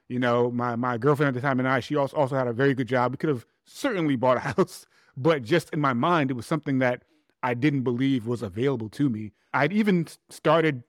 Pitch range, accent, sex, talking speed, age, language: 120-140 Hz, American, male, 240 wpm, 30-49, English